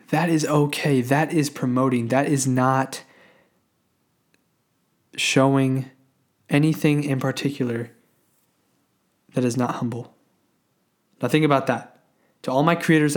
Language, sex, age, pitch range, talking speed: English, male, 20-39, 130-160 Hz, 115 wpm